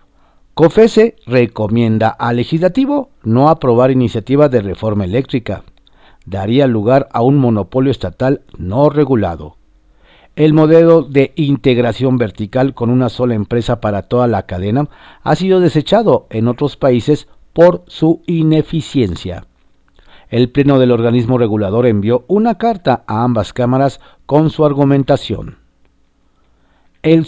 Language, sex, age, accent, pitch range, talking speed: Spanish, male, 50-69, Mexican, 110-155 Hz, 120 wpm